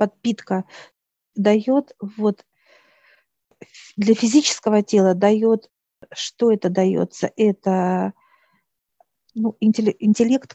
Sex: female